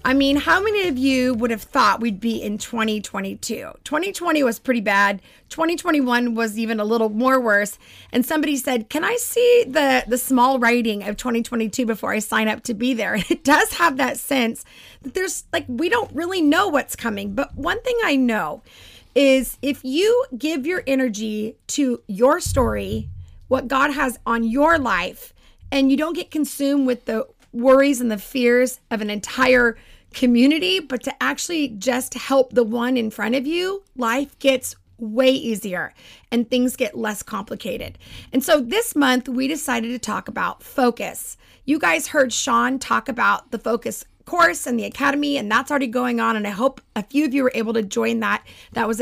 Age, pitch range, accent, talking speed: 30-49, 230-285 Hz, American, 190 wpm